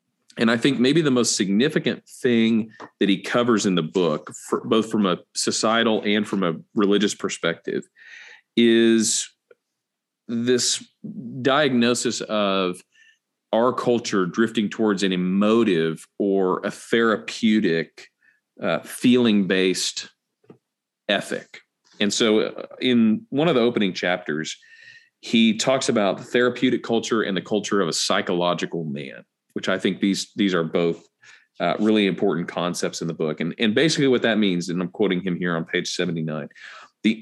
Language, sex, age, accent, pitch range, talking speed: English, male, 40-59, American, 90-115 Hz, 145 wpm